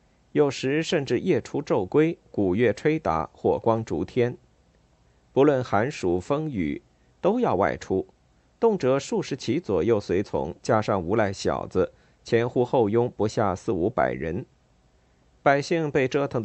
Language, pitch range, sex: Chinese, 100-140 Hz, male